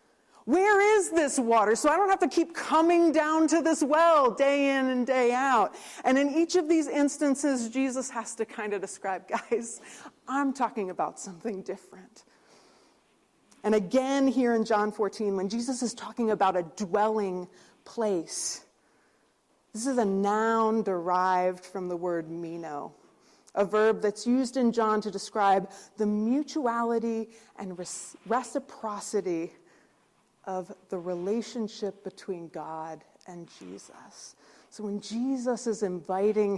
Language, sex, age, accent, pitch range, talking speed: English, female, 30-49, American, 195-255 Hz, 140 wpm